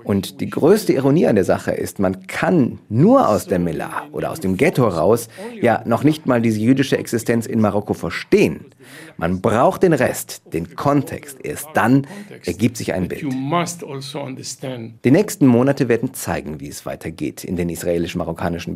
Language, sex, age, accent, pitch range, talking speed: German, male, 50-69, German, 95-130 Hz, 165 wpm